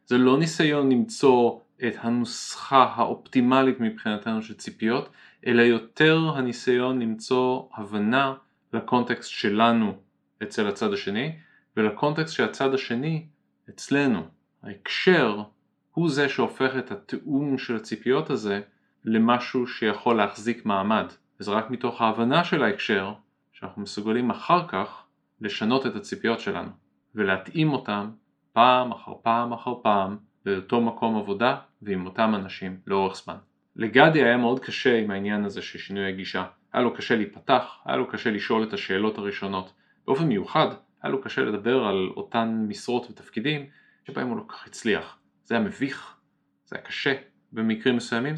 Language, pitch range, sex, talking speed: Hebrew, 105-130 Hz, male, 140 wpm